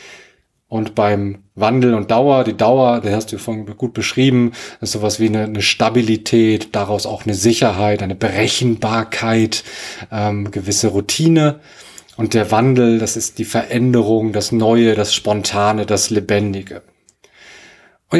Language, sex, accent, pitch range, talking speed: German, male, German, 105-125 Hz, 140 wpm